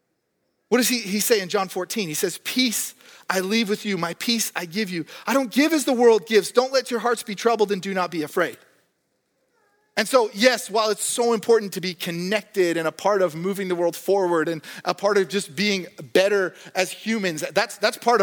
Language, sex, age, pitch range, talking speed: English, male, 30-49, 185-240 Hz, 225 wpm